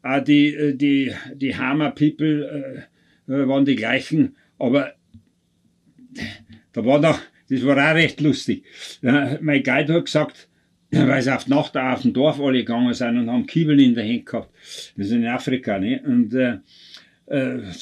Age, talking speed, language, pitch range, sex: 60-79, 170 wpm, German, 125-150 Hz, male